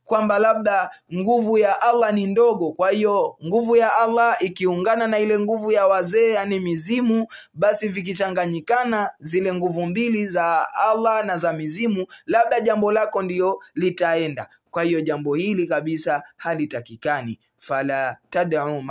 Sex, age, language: male, 20-39, Swahili